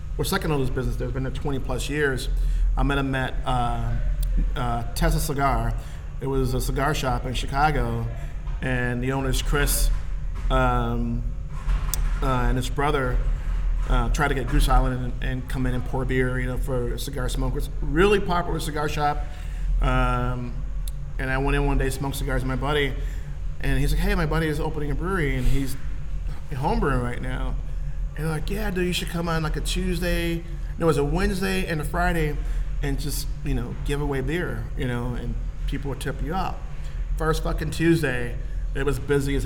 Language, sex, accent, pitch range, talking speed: English, male, American, 120-145 Hz, 190 wpm